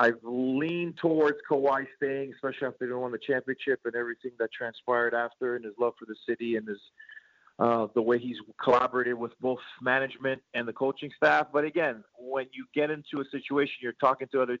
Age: 40-59